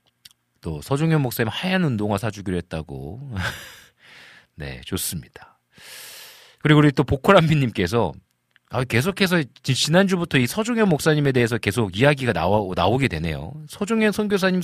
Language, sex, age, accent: Korean, male, 40-59, native